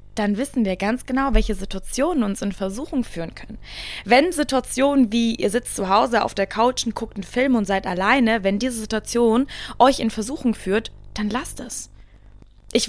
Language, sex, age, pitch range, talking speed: German, female, 20-39, 220-280 Hz, 185 wpm